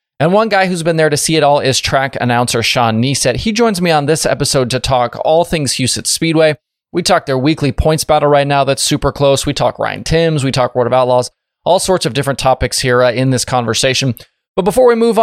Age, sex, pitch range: 20-39, male, 125-160 Hz